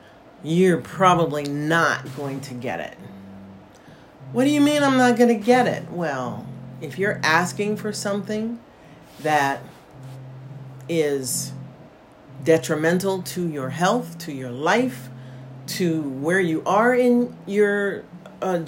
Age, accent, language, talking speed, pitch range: 40-59, American, English, 125 wpm, 130-175 Hz